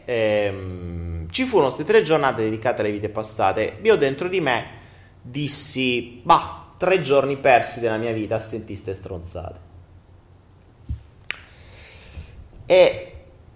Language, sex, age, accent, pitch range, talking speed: Italian, male, 30-49, native, 100-155 Hz, 110 wpm